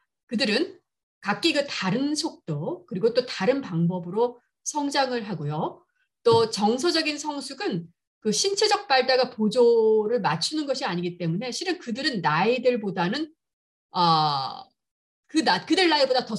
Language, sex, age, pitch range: Korean, female, 40-59, 180-280 Hz